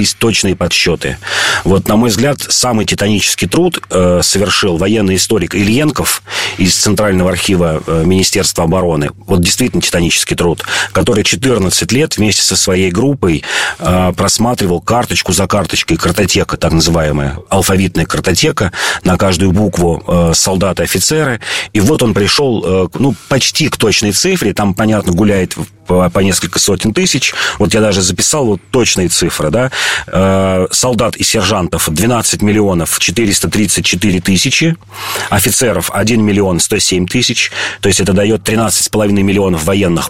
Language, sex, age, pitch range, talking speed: Russian, male, 40-59, 90-105 Hz, 135 wpm